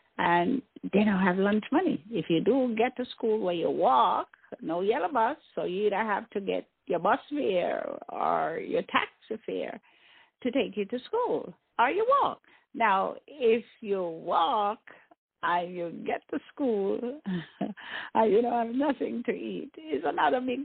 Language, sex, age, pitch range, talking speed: English, female, 50-69, 210-275 Hz, 170 wpm